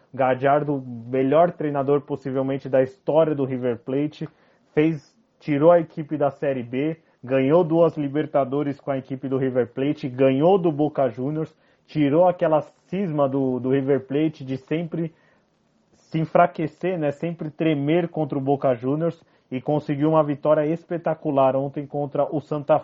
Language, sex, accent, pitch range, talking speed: Portuguese, male, Brazilian, 140-160 Hz, 145 wpm